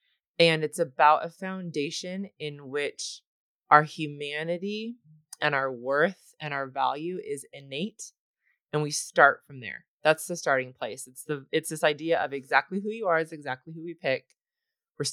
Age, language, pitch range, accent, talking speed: 20-39, English, 145-185 Hz, American, 165 wpm